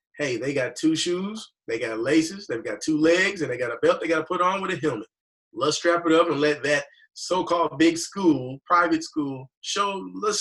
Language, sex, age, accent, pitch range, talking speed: English, male, 30-49, American, 155-235 Hz, 225 wpm